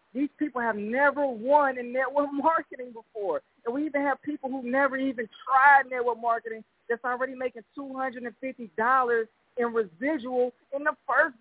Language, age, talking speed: English, 20-39, 155 wpm